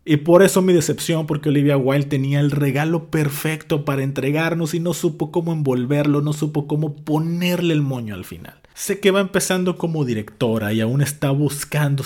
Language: Spanish